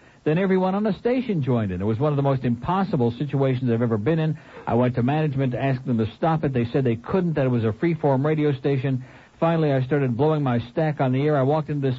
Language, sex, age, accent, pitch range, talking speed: English, male, 60-79, American, 115-150 Hz, 265 wpm